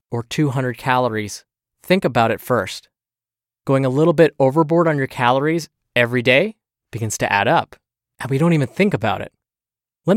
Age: 20-39